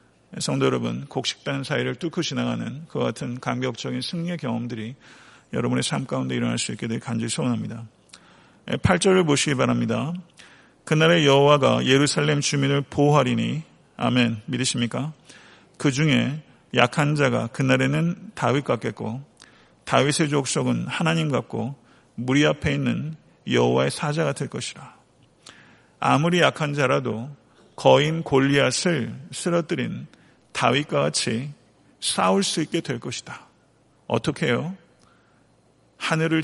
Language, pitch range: Korean, 120-155 Hz